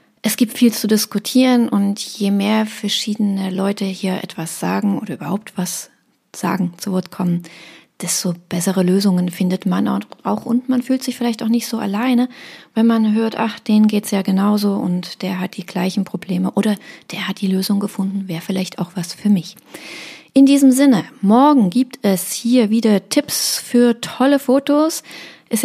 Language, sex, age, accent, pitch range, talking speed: German, female, 30-49, German, 190-240 Hz, 175 wpm